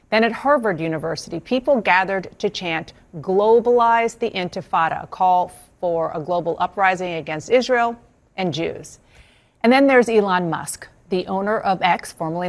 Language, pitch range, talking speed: English, 160-200 Hz, 150 wpm